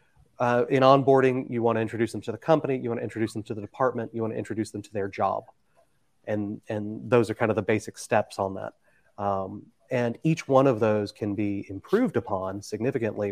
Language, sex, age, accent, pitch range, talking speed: English, male, 30-49, American, 105-130 Hz, 220 wpm